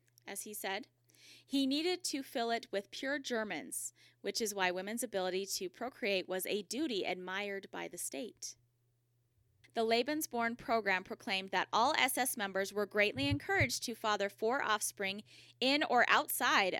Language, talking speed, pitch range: English, 155 wpm, 185-235 Hz